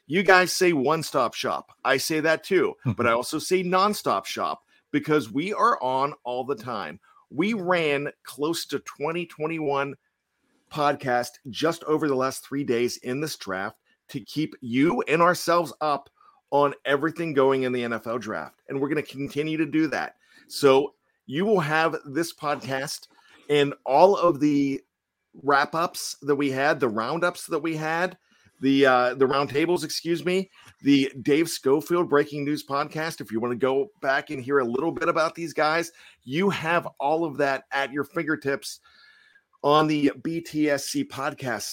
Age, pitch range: 40-59, 135-165 Hz